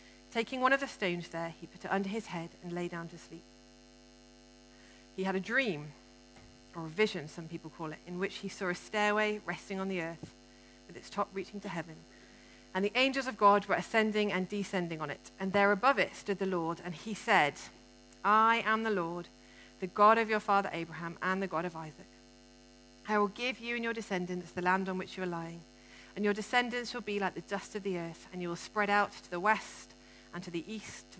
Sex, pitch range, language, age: female, 170-210 Hz, English, 40-59